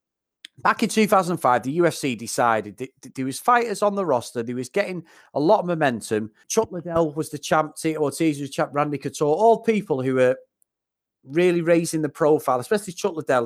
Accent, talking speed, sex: British, 190 wpm, male